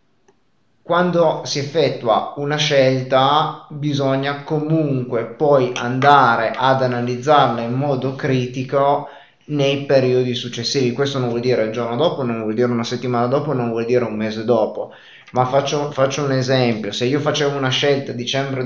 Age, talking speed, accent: 20-39, 155 wpm, native